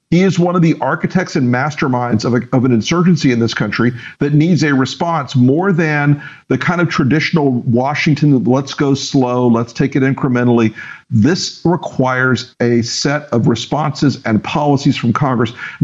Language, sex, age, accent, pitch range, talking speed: English, male, 50-69, American, 130-155 Hz, 170 wpm